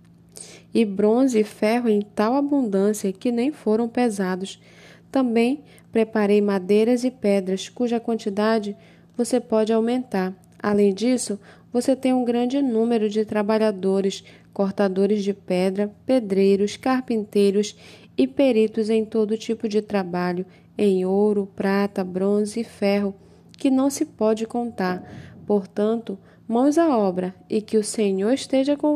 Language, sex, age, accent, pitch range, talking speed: Portuguese, female, 10-29, Brazilian, 195-235 Hz, 130 wpm